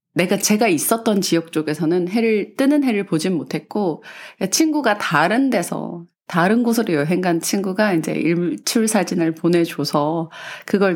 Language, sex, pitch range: Korean, female, 165-250 Hz